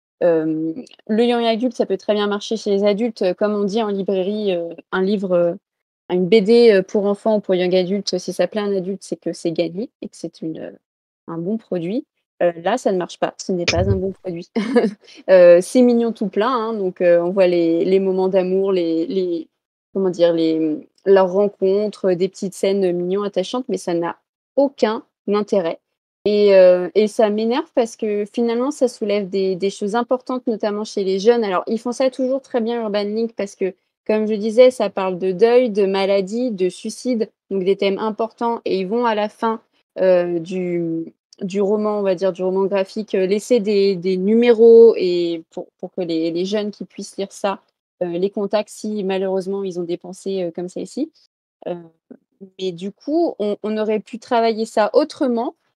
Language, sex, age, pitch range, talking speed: French, female, 20-39, 185-225 Hz, 200 wpm